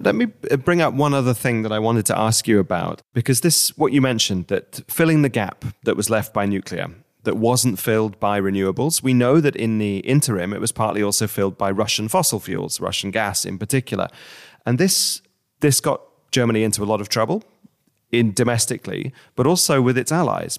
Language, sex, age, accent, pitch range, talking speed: English, male, 30-49, British, 105-135 Hz, 200 wpm